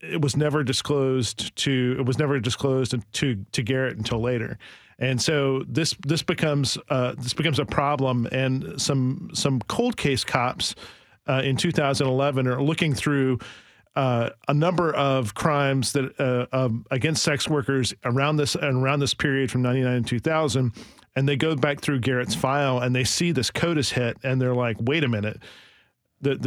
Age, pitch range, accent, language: 40-59, 125-145 Hz, American, English